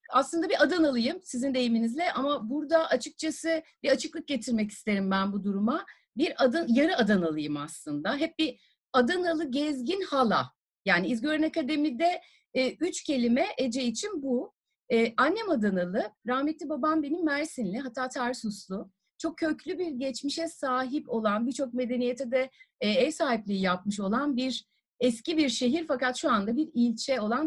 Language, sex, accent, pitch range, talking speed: Turkish, female, native, 220-310 Hz, 145 wpm